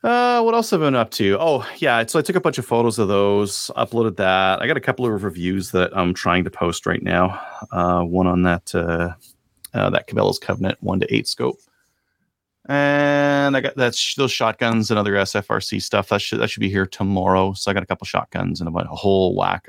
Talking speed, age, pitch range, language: 230 wpm, 30-49, 95-130 Hz, English